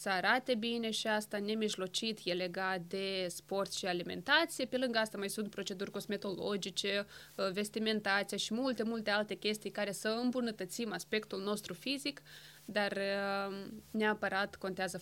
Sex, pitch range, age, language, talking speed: female, 195-225 Hz, 20-39, Romanian, 135 wpm